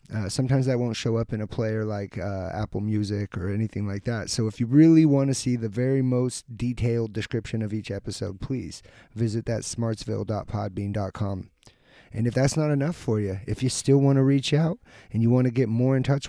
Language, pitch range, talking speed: English, 105-135 Hz, 215 wpm